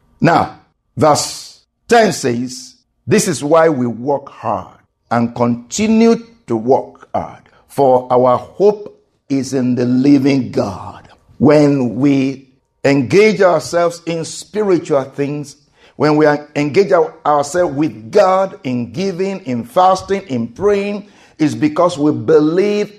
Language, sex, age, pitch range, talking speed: English, male, 50-69, 130-205 Hz, 120 wpm